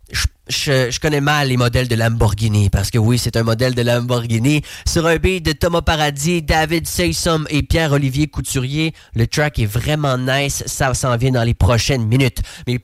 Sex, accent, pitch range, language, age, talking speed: male, Canadian, 120-155 Hz, English, 30-49, 185 wpm